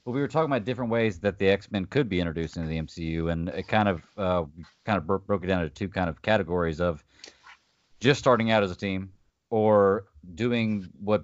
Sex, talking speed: male, 230 wpm